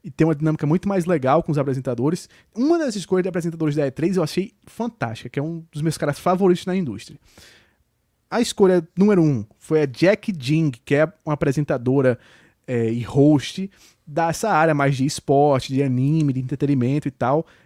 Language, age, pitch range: Portuguese, 20-39, 140-180 Hz